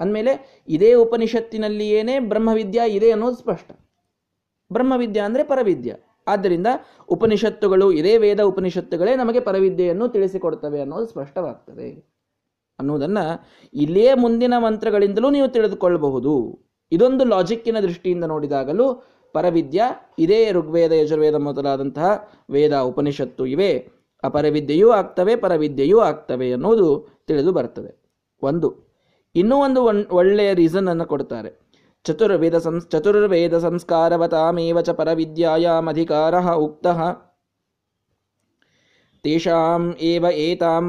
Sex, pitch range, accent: male, 160-215 Hz, native